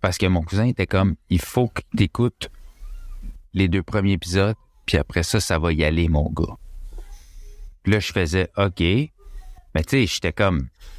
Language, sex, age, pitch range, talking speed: French, male, 30-49, 90-125 Hz, 180 wpm